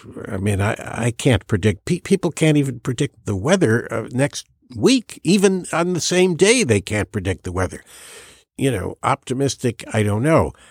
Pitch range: 105-140 Hz